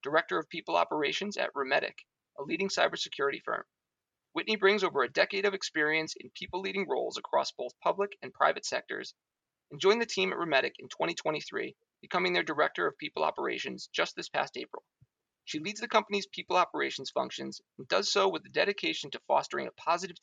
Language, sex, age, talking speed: English, male, 30-49, 180 wpm